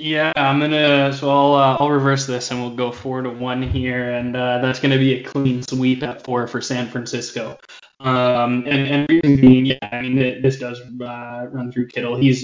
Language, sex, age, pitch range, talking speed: English, male, 10-29, 120-135 Hz, 220 wpm